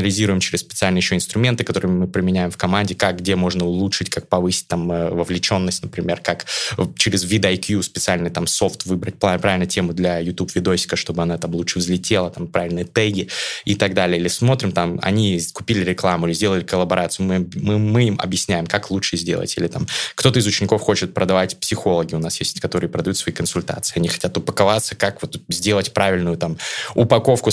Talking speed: 175 wpm